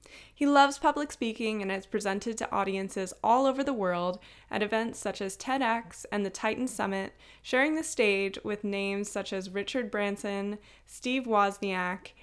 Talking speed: 160 wpm